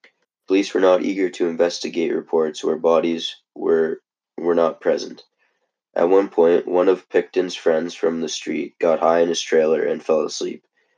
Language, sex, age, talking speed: English, male, 20-39, 170 wpm